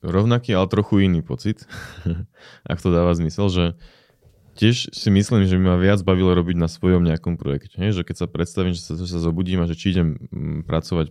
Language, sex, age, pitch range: Slovak, male, 20-39, 85-100 Hz